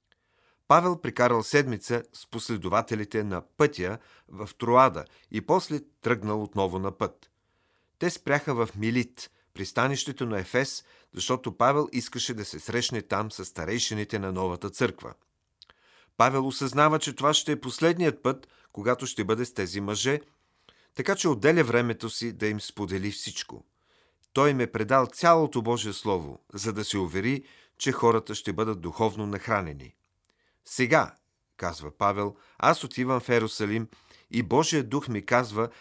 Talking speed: 145 wpm